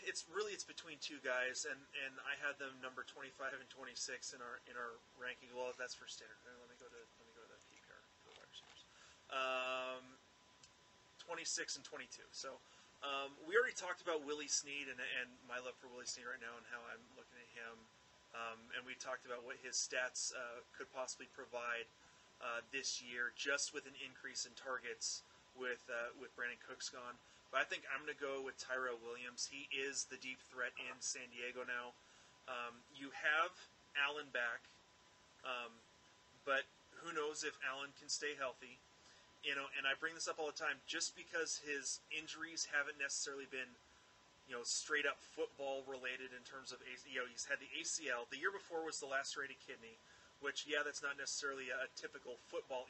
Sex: male